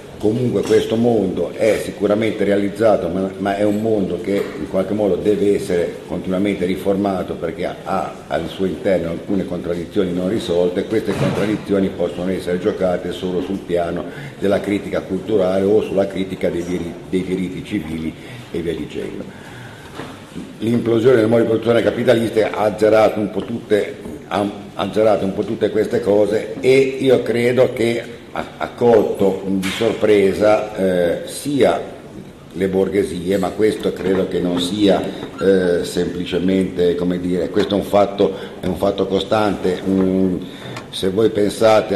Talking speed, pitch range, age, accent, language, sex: 145 wpm, 90-105 Hz, 50-69, native, Italian, male